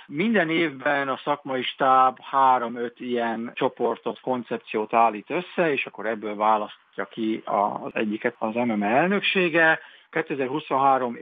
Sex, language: male, Hungarian